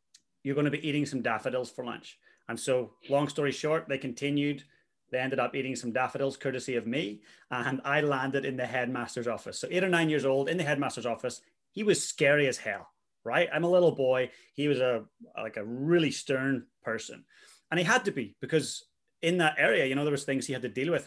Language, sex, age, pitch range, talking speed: English, male, 30-49, 125-155 Hz, 220 wpm